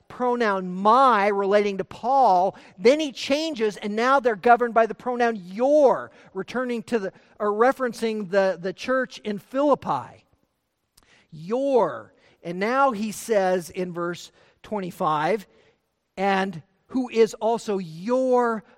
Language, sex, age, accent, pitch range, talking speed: English, male, 50-69, American, 185-255 Hz, 125 wpm